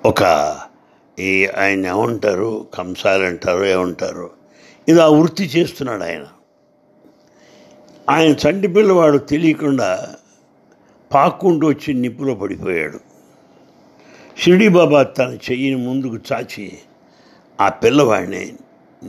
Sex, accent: male, Indian